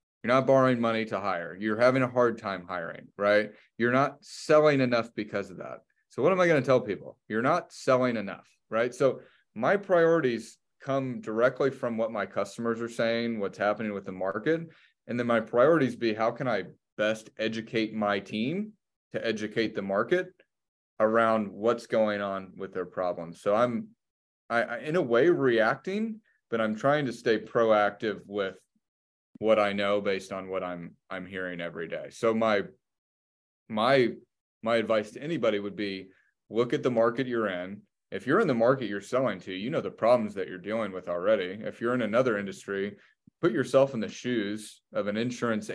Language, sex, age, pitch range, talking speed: English, male, 30-49, 100-120 Hz, 190 wpm